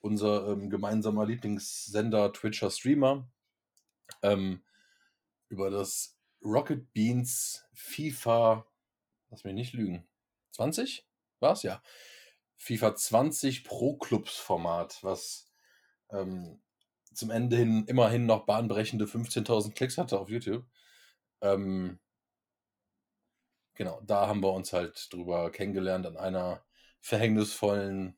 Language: German